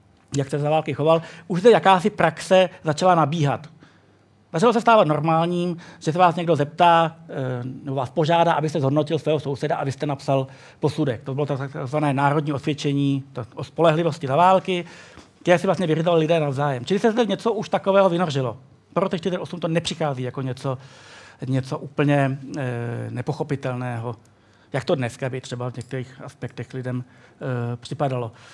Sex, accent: male, native